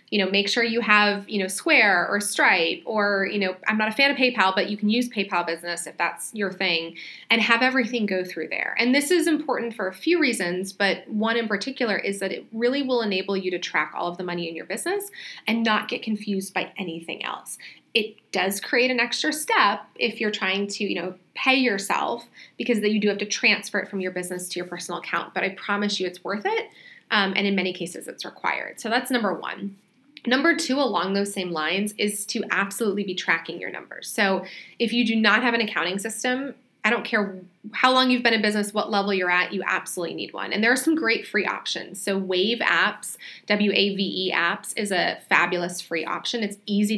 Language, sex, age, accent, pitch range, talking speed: English, female, 20-39, American, 185-230 Hz, 225 wpm